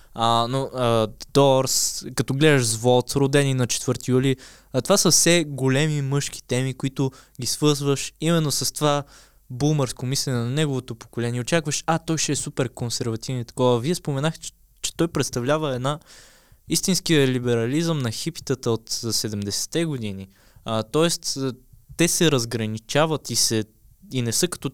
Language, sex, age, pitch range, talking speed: Bulgarian, male, 20-39, 120-145 Hz, 150 wpm